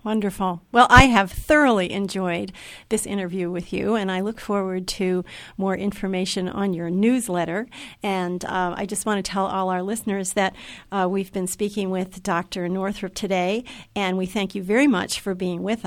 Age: 50-69